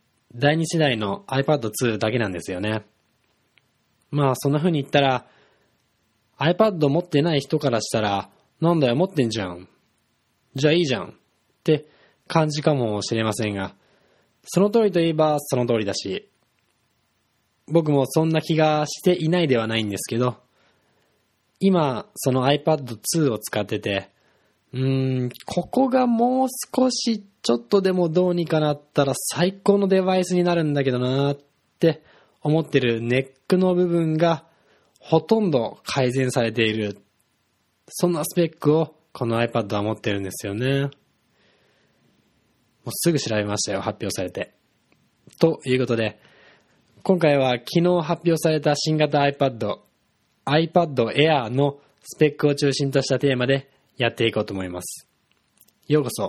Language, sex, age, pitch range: Japanese, male, 20-39, 115-160 Hz